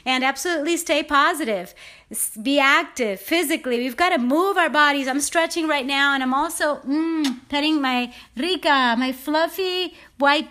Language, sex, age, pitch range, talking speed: English, female, 30-49, 255-305 Hz, 155 wpm